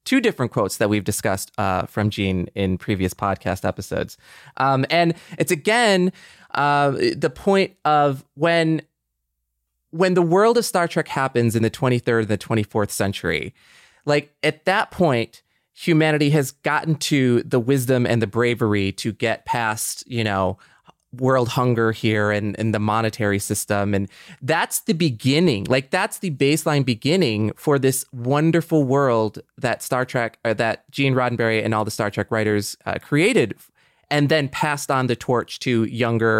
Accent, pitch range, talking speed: American, 115-155 Hz, 160 wpm